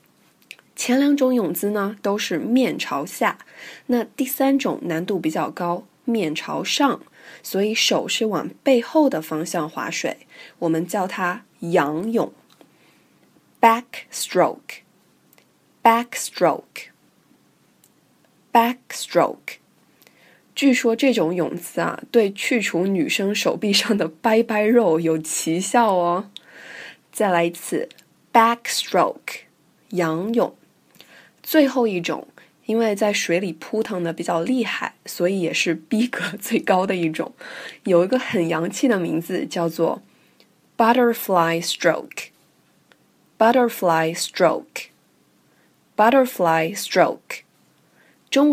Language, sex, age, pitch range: Chinese, female, 20-39, 170-235 Hz